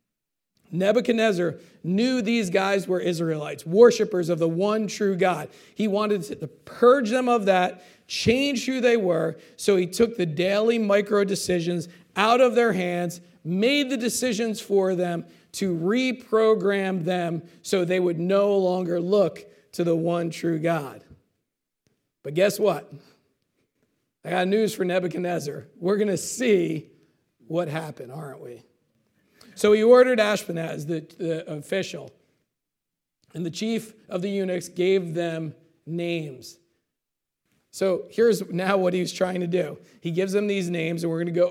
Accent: American